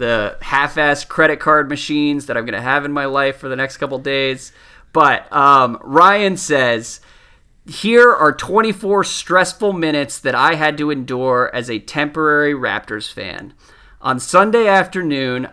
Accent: American